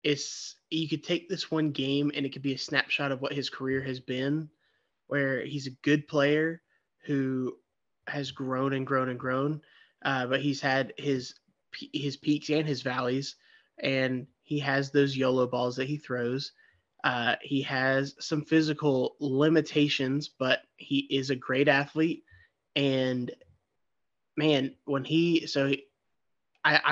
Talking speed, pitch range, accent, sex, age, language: 150 wpm, 130-150 Hz, American, male, 20-39, English